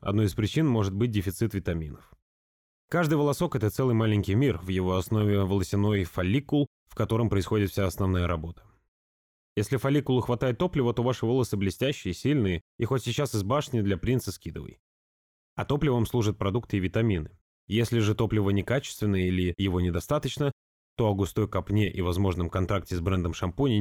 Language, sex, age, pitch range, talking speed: Russian, male, 20-39, 95-125 Hz, 165 wpm